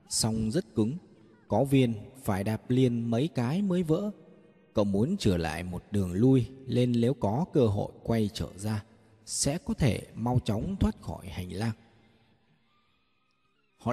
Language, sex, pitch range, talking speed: Vietnamese, male, 105-150 Hz, 160 wpm